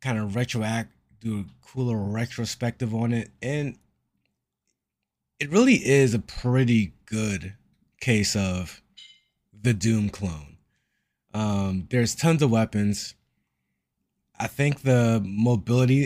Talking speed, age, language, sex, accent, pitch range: 110 wpm, 20-39, English, male, American, 105-130 Hz